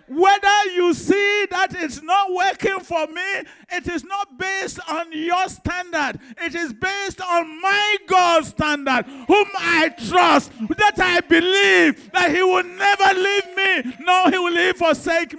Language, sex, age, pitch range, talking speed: English, male, 50-69, 295-390 Hz, 150 wpm